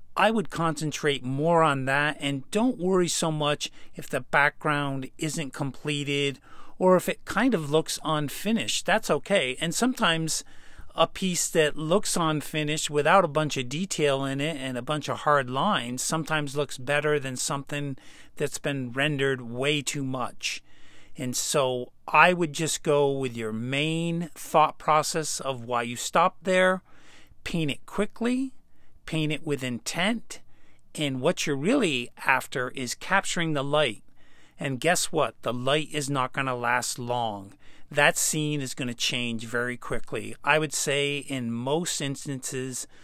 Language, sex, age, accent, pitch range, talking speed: English, male, 40-59, American, 130-160 Hz, 160 wpm